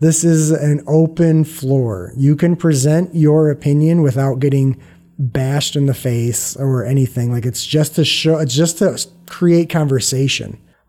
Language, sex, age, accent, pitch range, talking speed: English, male, 30-49, American, 135-165 Hz, 155 wpm